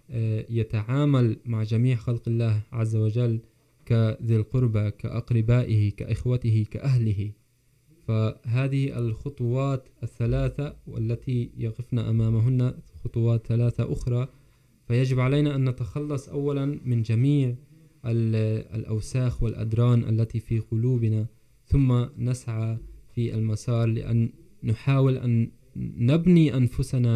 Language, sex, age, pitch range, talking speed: Urdu, male, 20-39, 110-130 Hz, 95 wpm